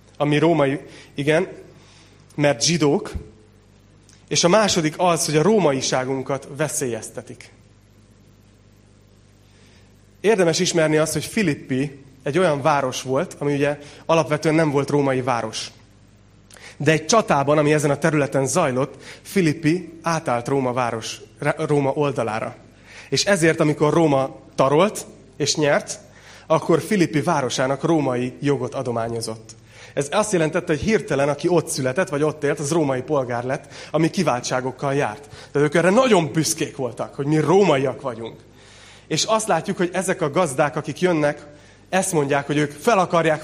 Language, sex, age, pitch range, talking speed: Hungarian, male, 30-49, 120-165 Hz, 135 wpm